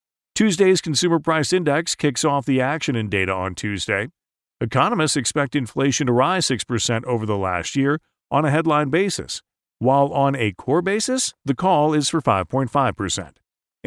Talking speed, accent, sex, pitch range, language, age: 155 wpm, American, male, 110-155 Hz, English, 40-59